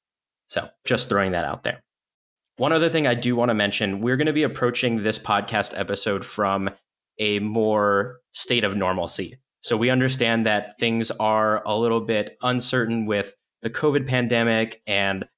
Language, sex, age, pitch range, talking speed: English, male, 20-39, 100-120 Hz, 170 wpm